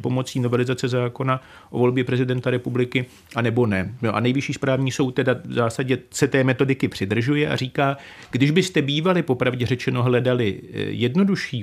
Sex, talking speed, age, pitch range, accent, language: male, 170 wpm, 40-59, 125-145 Hz, native, Czech